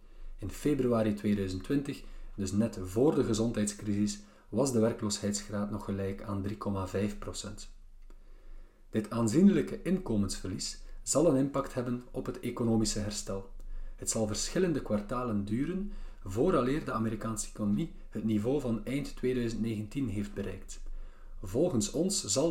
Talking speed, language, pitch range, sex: 120 wpm, Dutch, 100-130 Hz, male